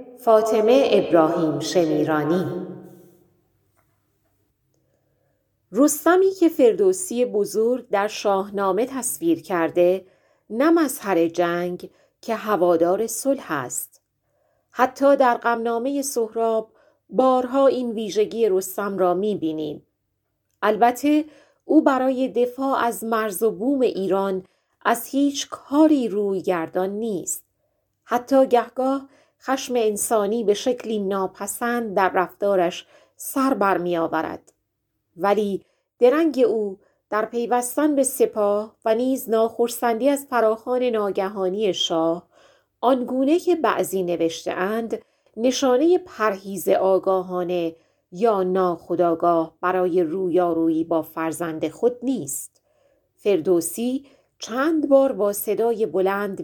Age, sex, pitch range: 40-59, female, 175-250 Hz